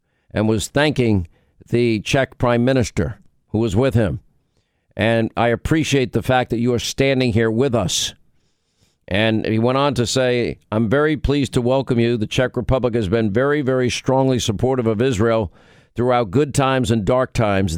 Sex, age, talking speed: male, 50-69, 175 wpm